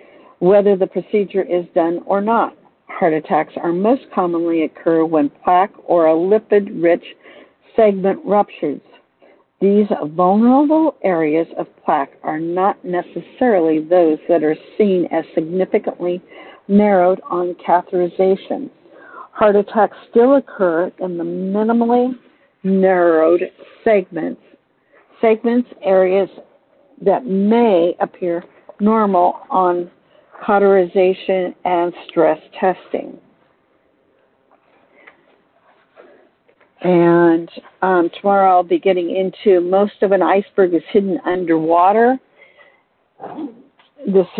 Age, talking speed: 60-79, 95 wpm